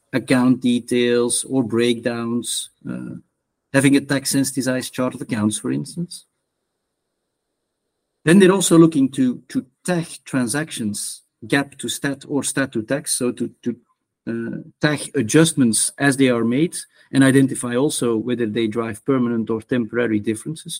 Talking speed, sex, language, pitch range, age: 140 wpm, male, English, 120-150 Hz, 50-69